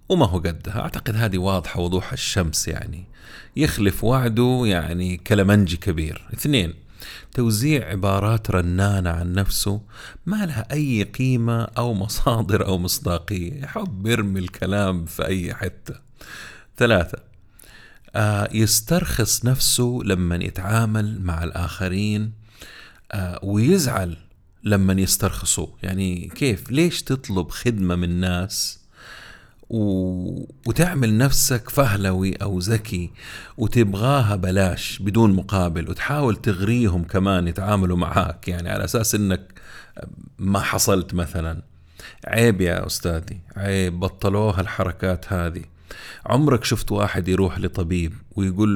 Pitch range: 90-110 Hz